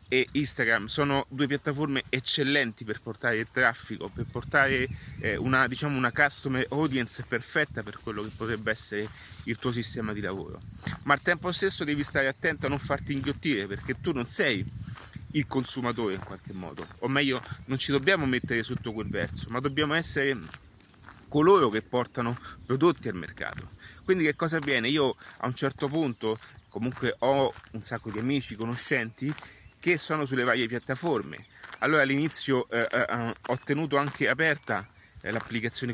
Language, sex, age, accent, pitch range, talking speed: Italian, male, 30-49, native, 115-145 Hz, 160 wpm